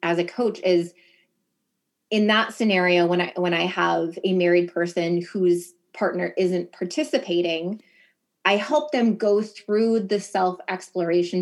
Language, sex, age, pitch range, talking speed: English, female, 20-39, 175-210 Hz, 140 wpm